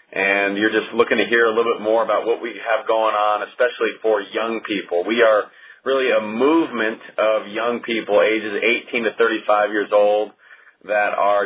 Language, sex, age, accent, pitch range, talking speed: English, male, 30-49, American, 105-120 Hz, 190 wpm